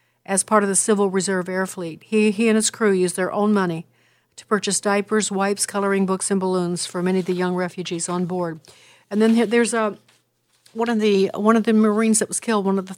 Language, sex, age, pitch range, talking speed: English, female, 60-79, 185-220 Hz, 230 wpm